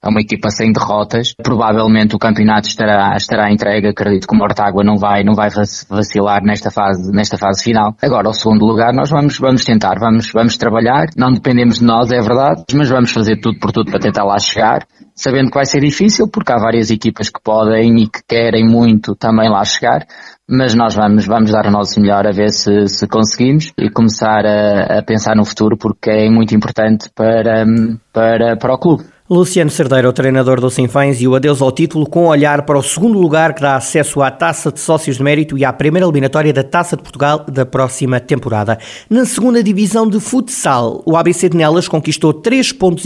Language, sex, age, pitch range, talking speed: Portuguese, male, 20-39, 110-150 Hz, 205 wpm